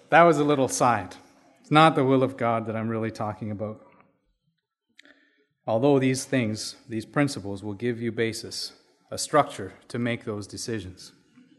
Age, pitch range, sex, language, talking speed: 30-49, 125-180 Hz, male, English, 160 wpm